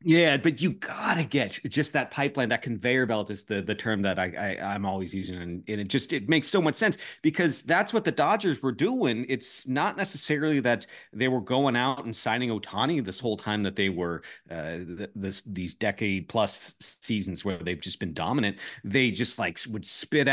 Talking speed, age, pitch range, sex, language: 215 wpm, 30-49, 105-130 Hz, male, English